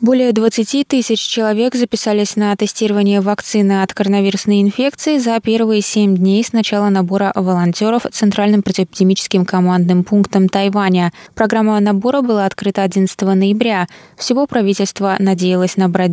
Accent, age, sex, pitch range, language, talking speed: native, 20-39, female, 185-215 Hz, Russian, 125 wpm